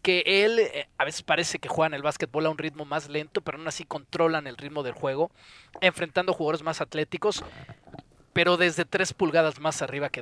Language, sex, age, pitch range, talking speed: Spanish, male, 40-59, 150-185 Hz, 200 wpm